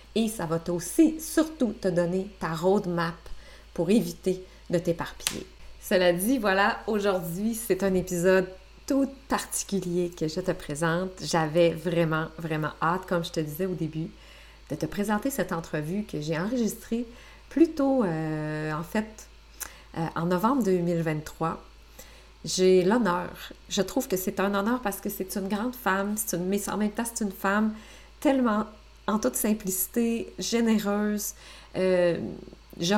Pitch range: 175-215 Hz